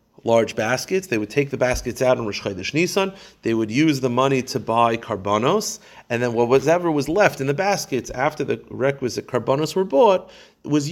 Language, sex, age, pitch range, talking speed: English, male, 40-59, 115-155 Hz, 190 wpm